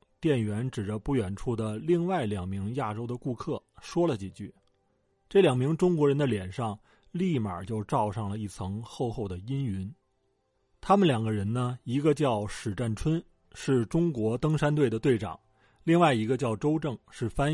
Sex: male